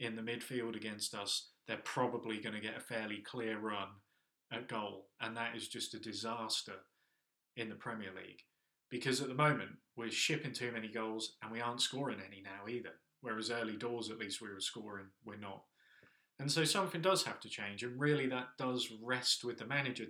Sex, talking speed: male, 195 wpm